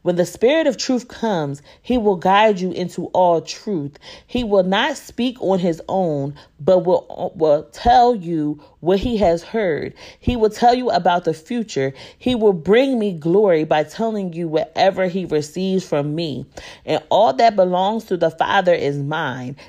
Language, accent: English, American